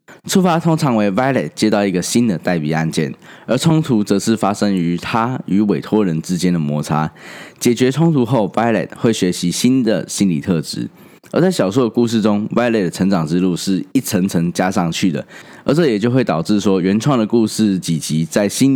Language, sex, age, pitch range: Chinese, male, 10-29, 90-120 Hz